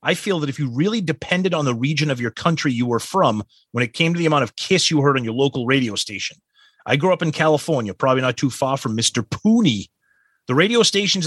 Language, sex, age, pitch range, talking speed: English, male, 30-49, 125-170 Hz, 245 wpm